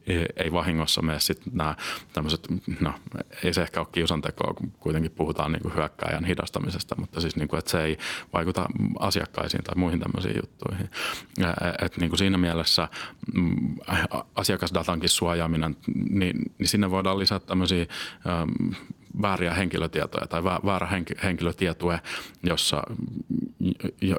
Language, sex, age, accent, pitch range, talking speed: Finnish, male, 30-49, native, 80-90 Hz, 125 wpm